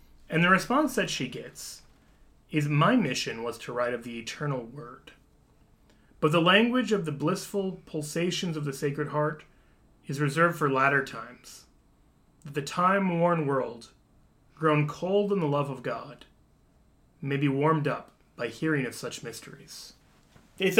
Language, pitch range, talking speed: English, 135-175 Hz, 155 wpm